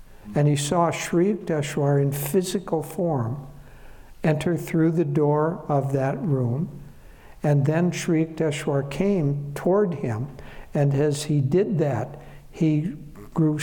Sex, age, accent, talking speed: male, 60-79, American, 130 wpm